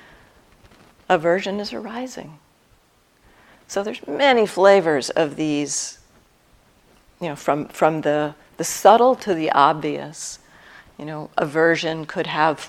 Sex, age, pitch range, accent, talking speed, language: female, 50-69, 150-180 Hz, American, 115 wpm, English